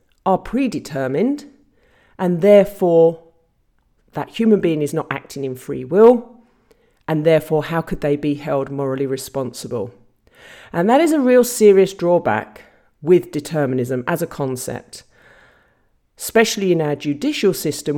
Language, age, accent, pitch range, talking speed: English, 40-59, British, 140-195 Hz, 130 wpm